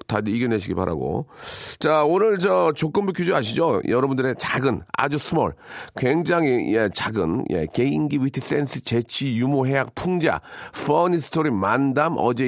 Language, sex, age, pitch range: Korean, male, 40-59, 110-155 Hz